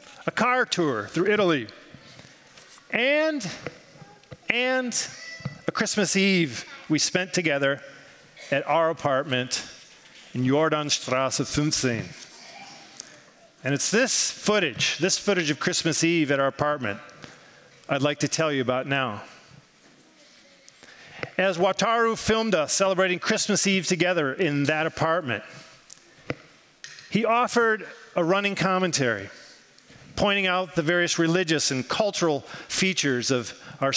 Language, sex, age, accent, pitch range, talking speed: English, male, 40-59, American, 150-200 Hz, 115 wpm